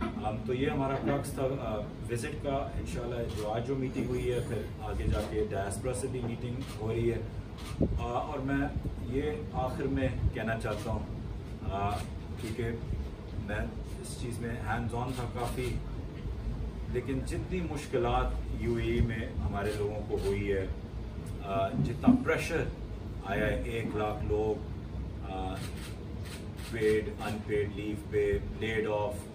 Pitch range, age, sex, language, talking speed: 100-115 Hz, 30-49, male, Urdu, 140 wpm